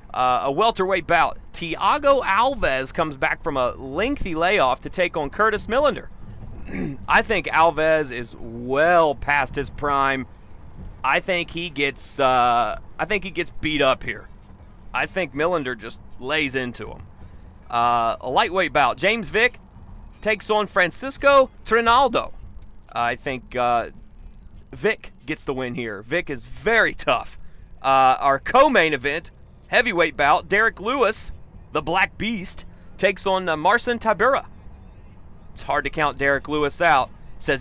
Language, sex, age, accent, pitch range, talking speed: English, male, 30-49, American, 115-180 Hz, 145 wpm